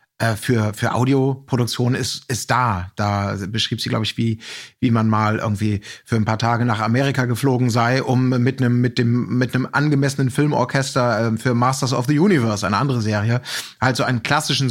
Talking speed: 185 wpm